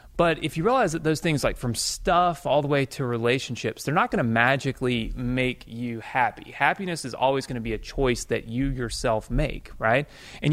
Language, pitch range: English, 115-145 Hz